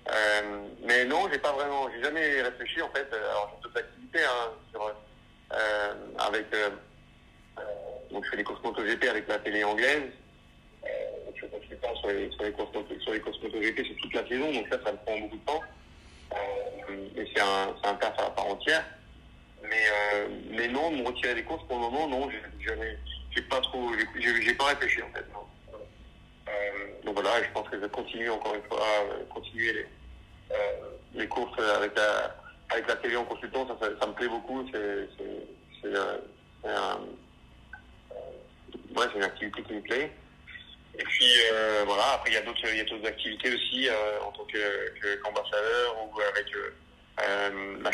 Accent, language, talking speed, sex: French, English, 200 wpm, male